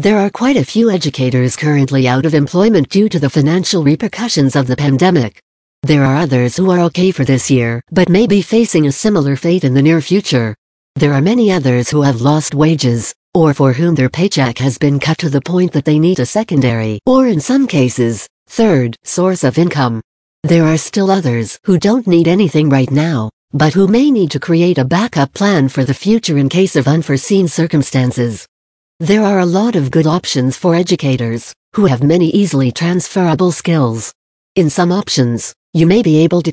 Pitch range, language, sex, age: 135-180 Hz, English, female, 60-79